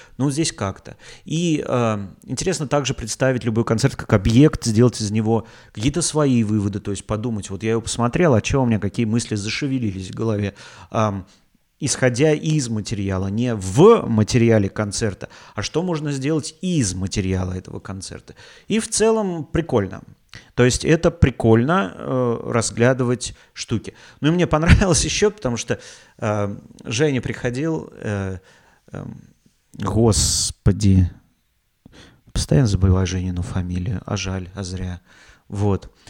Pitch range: 100-130 Hz